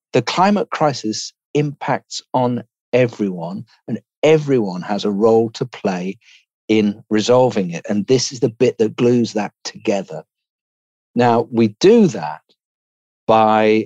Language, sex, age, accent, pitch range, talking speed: English, male, 50-69, British, 100-130 Hz, 130 wpm